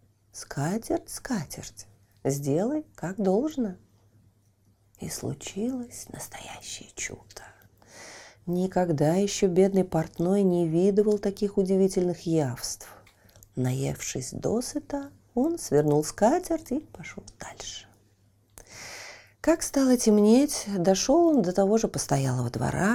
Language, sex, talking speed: Russian, female, 95 wpm